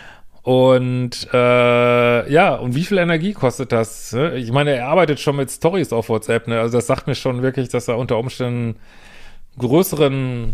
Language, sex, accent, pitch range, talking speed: German, male, German, 120-150 Hz, 175 wpm